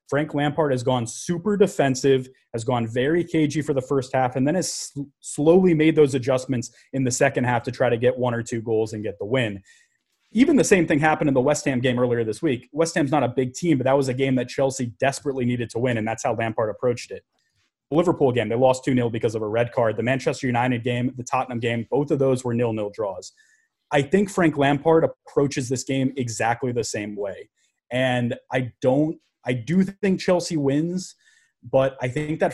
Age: 30-49